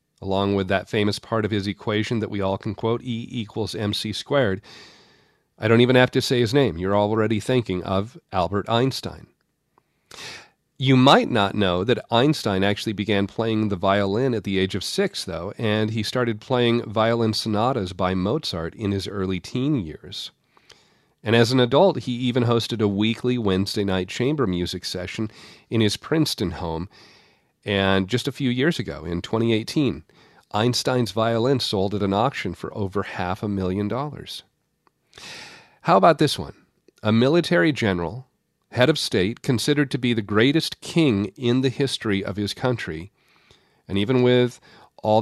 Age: 40-59